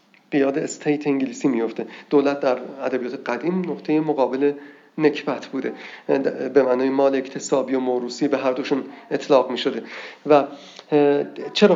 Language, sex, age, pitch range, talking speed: Persian, male, 40-59, 130-150 Hz, 130 wpm